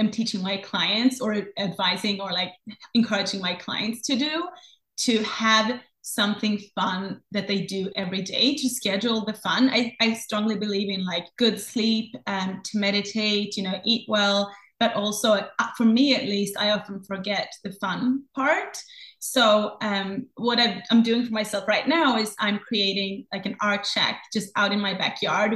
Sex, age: female, 30-49